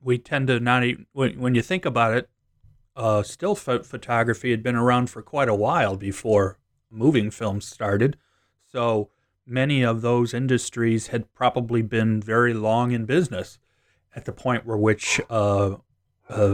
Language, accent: English, American